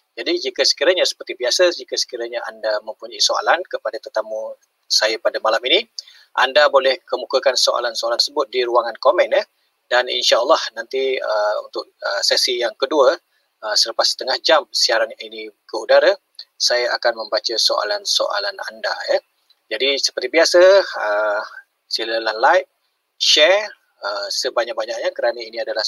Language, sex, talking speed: Malay, male, 145 wpm